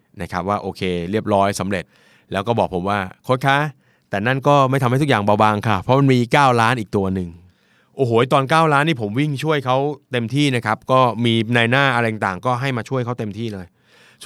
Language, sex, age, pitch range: Thai, male, 20-39, 100-145 Hz